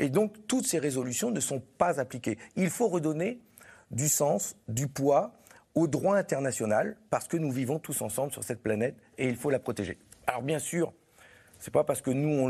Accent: French